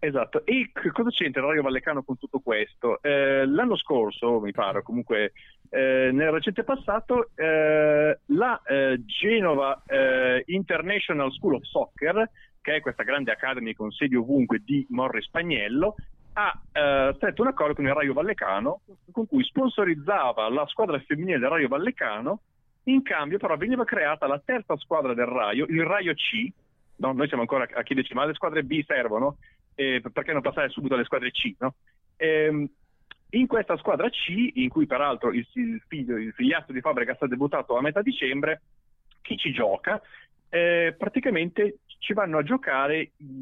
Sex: male